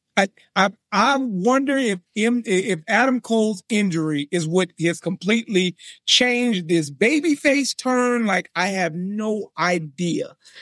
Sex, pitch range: male, 185-255 Hz